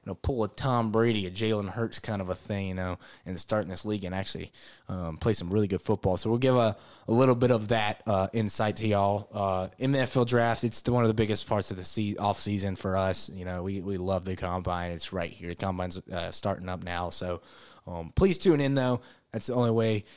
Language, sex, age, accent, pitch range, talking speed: English, male, 20-39, American, 95-120 Hz, 255 wpm